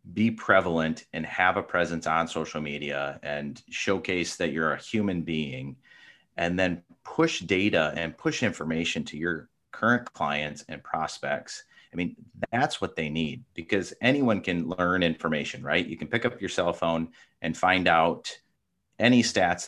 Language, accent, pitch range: English, American, 80-95 Hz